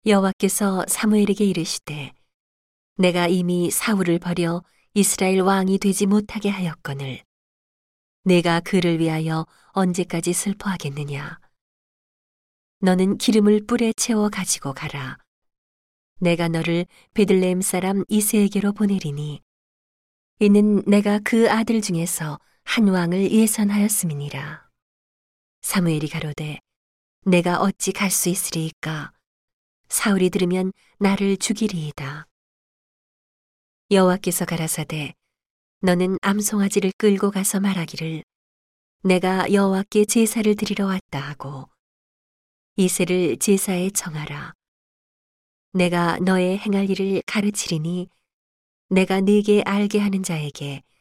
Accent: native